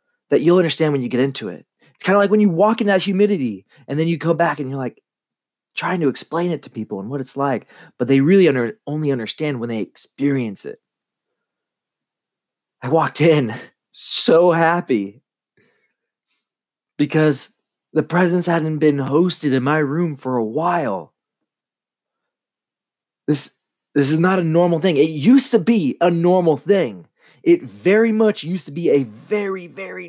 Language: English